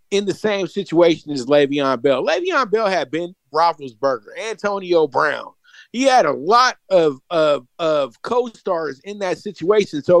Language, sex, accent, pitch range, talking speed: English, male, American, 170-240 Hz, 155 wpm